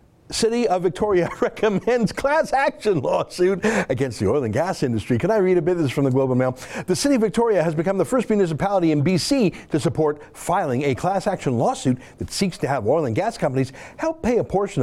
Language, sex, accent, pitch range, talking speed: English, male, American, 125-195 Hz, 220 wpm